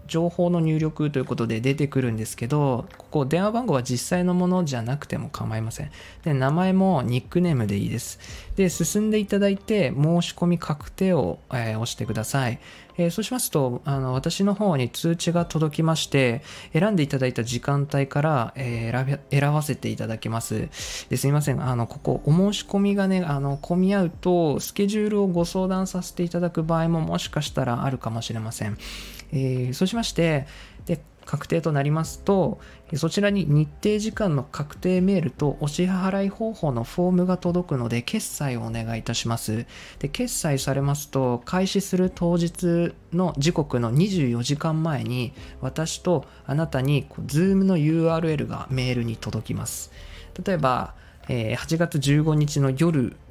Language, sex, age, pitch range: Japanese, male, 20-39, 125-175 Hz